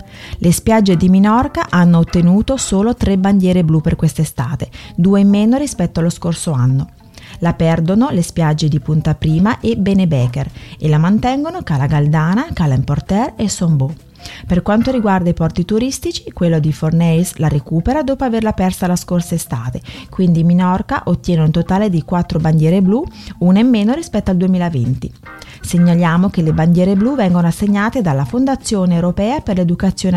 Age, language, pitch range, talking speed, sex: 30-49, Italian, 165-215 Hz, 160 wpm, female